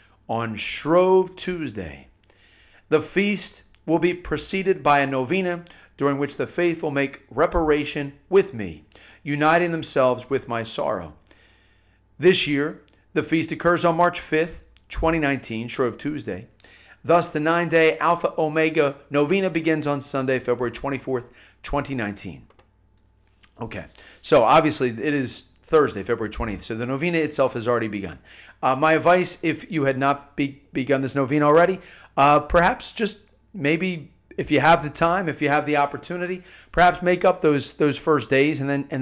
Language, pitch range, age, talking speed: English, 120-165 Hz, 40-59, 150 wpm